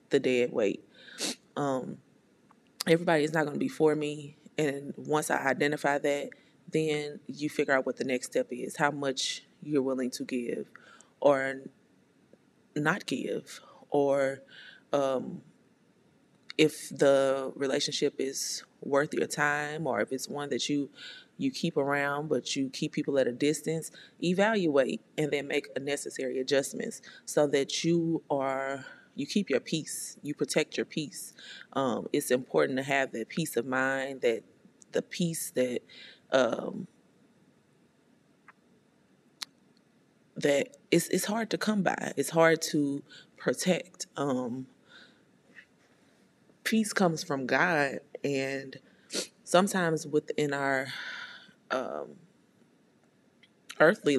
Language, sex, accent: English, female, American